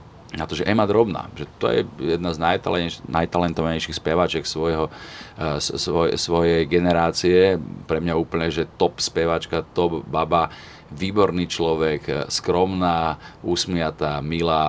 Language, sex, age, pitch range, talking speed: Slovak, male, 40-59, 80-95 Hz, 120 wpm